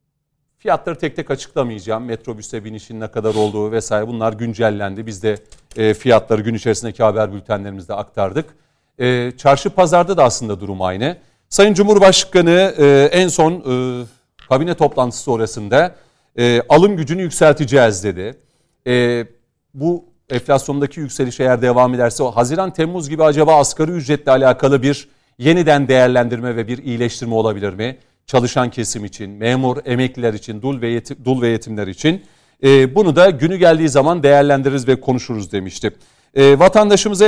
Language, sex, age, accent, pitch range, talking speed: Turkish, male, 40-59, native, 115-155 Hz, 130 wpm